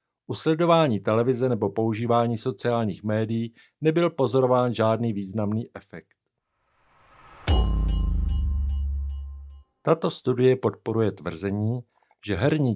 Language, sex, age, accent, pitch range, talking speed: Czech, male, 50-69, native, 105-135 Hz, 80 wpm